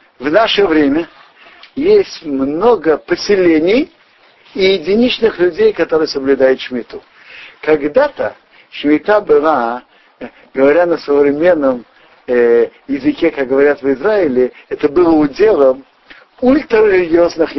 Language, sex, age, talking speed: Russian, male, 60-79, 95 wpm